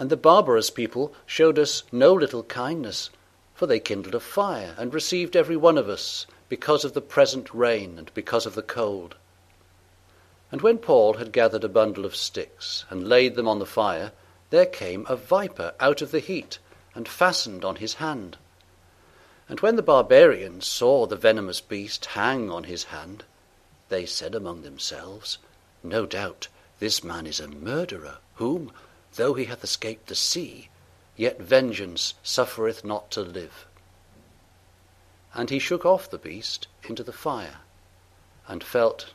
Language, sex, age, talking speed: English, male, 60-79, 160 wpm